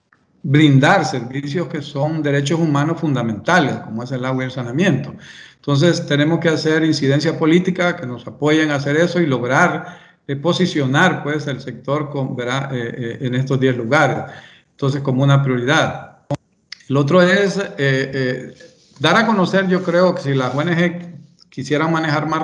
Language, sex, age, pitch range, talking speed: English, male, 50-69, 135-170 Hz, 165 wpm